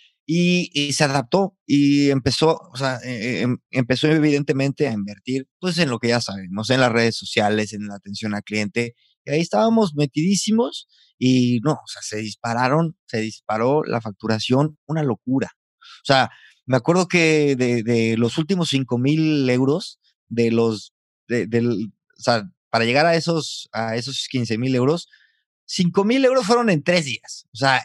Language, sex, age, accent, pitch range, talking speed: Spanish, male, 30-49, Mexican, 120-165 Hz, 170 wpm